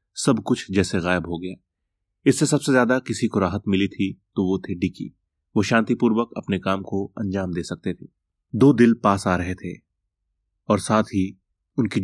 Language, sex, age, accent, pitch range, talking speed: Hindi, male, 30-49, native, 90-110 Hz, 185 wpm